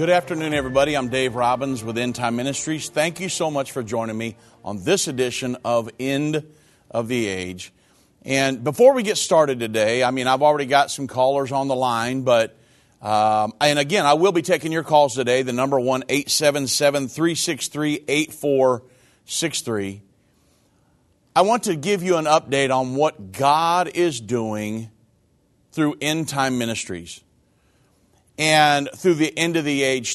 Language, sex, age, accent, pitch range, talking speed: English, male, 40-59, American, 115-155 Hz, 150 wpm